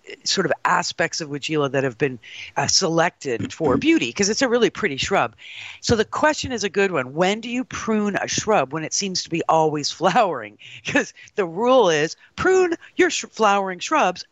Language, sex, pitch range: English, female, 155-205 Hz